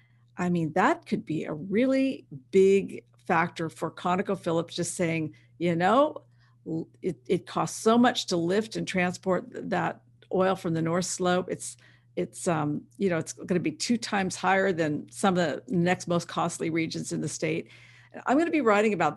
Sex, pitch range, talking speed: female, 155-195 Hz, 185 wpm